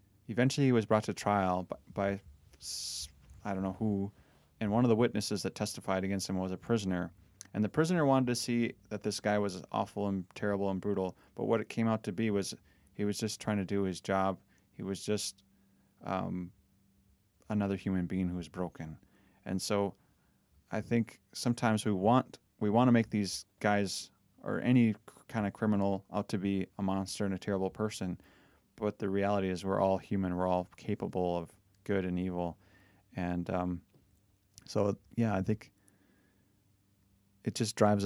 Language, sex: English, male